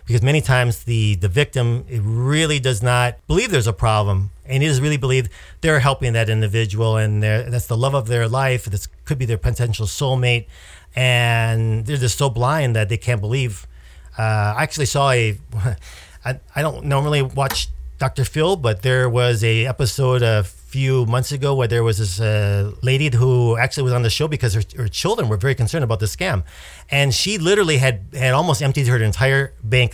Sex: male